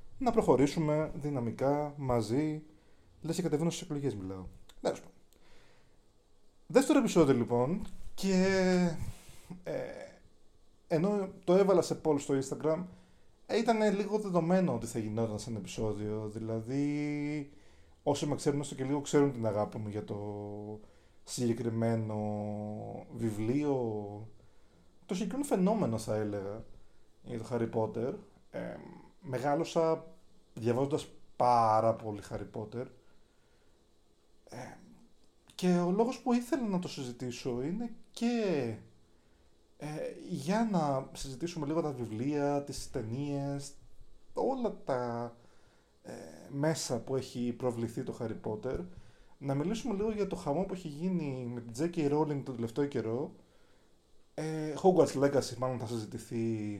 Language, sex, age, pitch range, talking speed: Greek, male, 20-39, 110-165 Hz, 115 wpm